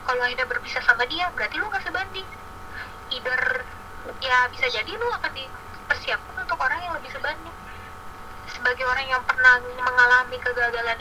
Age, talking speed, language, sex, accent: 20-39, 145 wpm, Indonesian, female, native